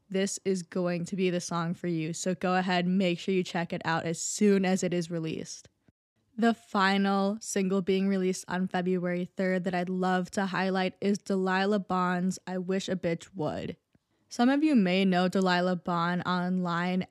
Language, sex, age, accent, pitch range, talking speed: English, female, 10-29, American, 180-195 Hz, 185 wpm